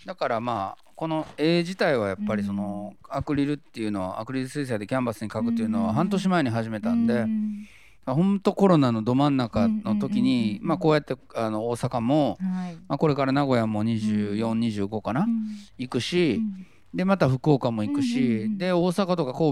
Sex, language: male, Japanese